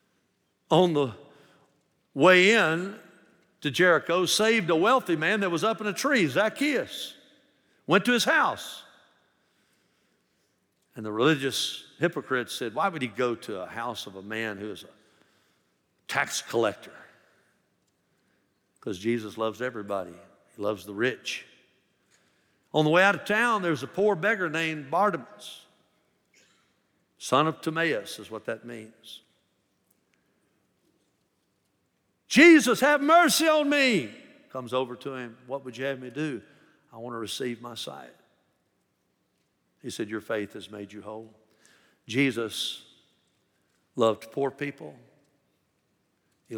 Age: 60-79